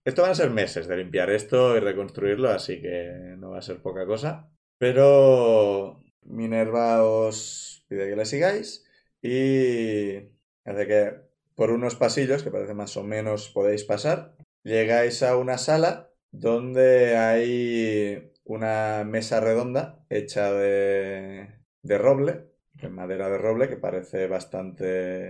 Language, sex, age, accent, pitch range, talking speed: Spanish, male, 20-39, Spanish, 100-125 Hz, 140 wpm